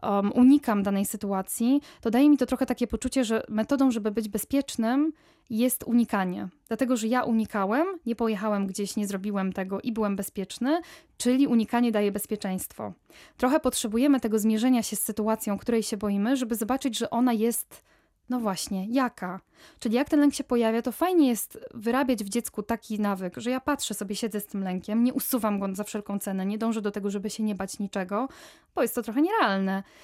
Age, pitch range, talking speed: 10-29, 210-265 Hz, 190 wpm